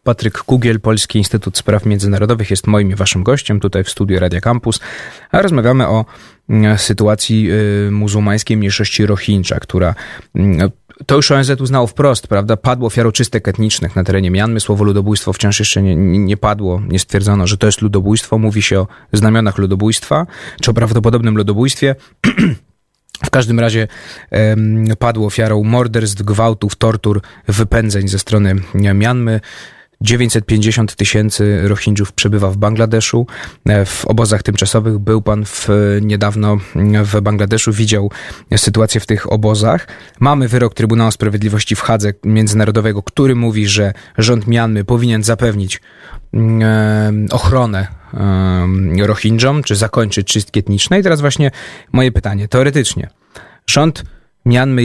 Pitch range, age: 100-115 Hz, 20-39